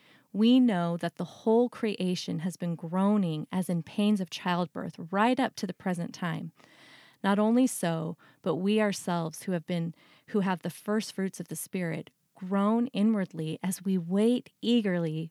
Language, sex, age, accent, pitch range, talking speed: English, female, 30-49, American, 170-205 Hz, 170 wpm